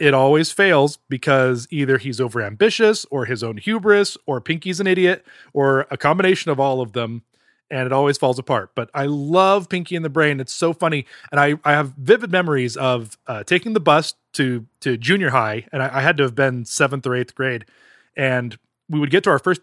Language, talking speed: English, 215 wpm